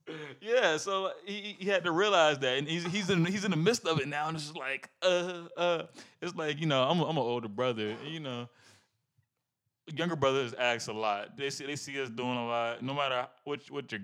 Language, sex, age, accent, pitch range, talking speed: English, male, 20-39, American, 115-150 Hz, 230 wpm